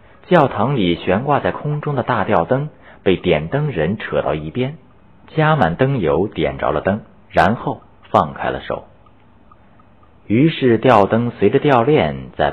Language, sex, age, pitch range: Chinese, male, 50-69, 95-125 Hz